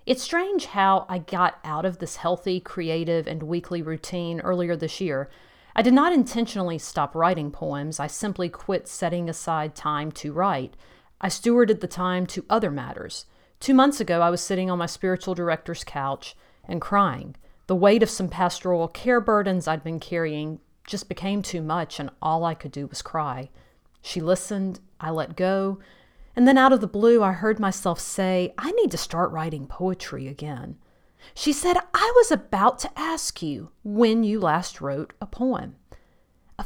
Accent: American